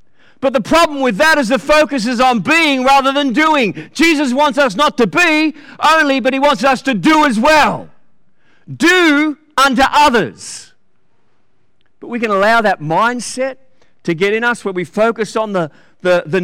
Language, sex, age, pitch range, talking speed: English, male, 50-69, 200-265 Hz, 175 wpm